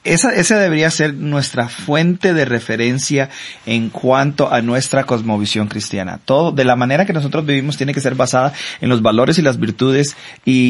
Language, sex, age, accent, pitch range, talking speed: English, male, 30-49, Mexican, 115-150 Hz, 180 wpm